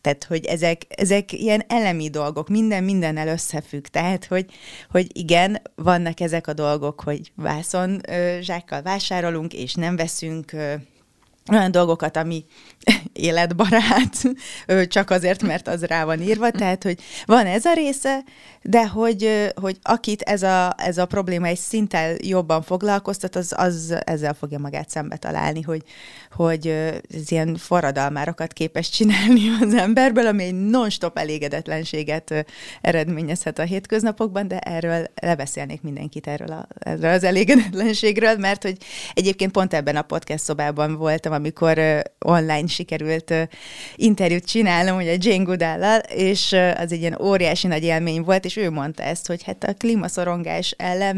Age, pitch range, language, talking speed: 30-49, 160-200 Hz, Hungarian, 145 wpm